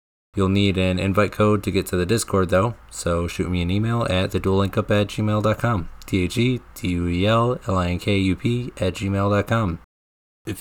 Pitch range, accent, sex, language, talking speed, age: 85-100 Hz, American, male, English, 130 wpm, 20-39